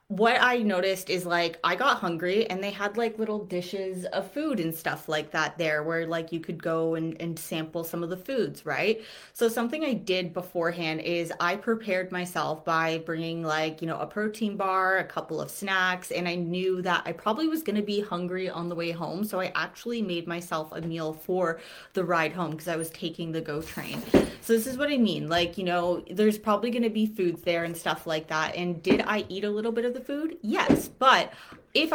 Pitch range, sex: 160-200 Hz, female